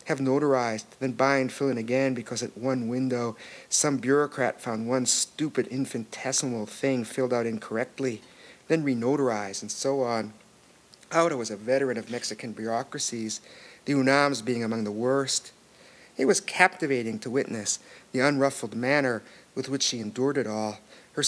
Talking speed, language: 155 wpm, English